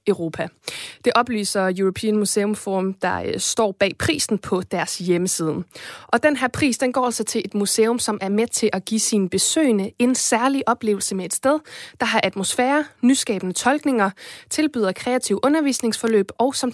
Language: Danish